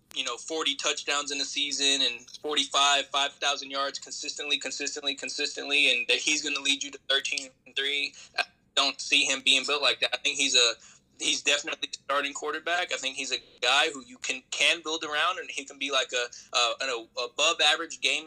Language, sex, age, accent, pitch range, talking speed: English, male, 20-39, American, 135-150 Hz, 205 wpm